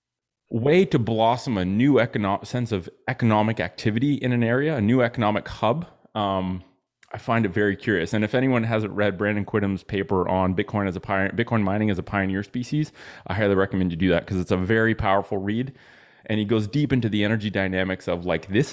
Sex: male